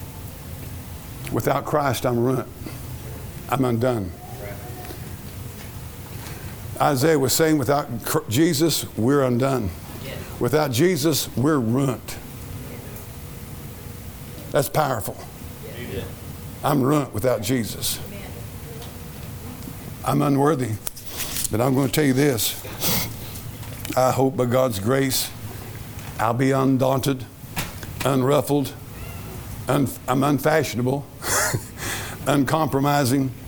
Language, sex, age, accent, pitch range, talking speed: English, male, 50-69, American, 115-140 Hz, 80 wpm